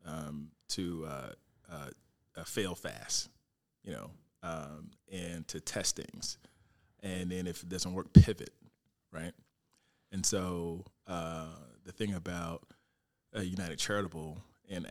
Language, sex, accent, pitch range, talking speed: English, male, American, 85-100 Hz, 130 wpm